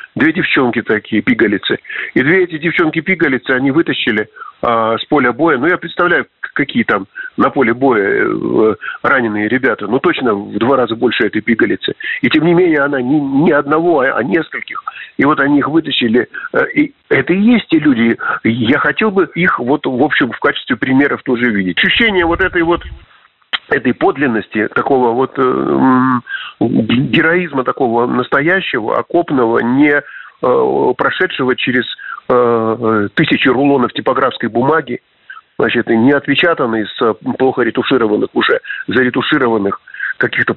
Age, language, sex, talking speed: 50-69, Russian, male, 145 wpm